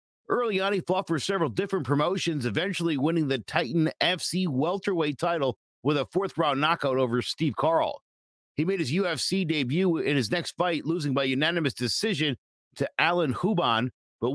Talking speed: 165 wpm